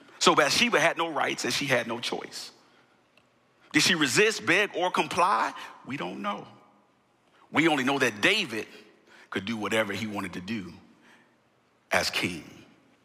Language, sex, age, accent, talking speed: English, male, 40-59, American, 150 wpm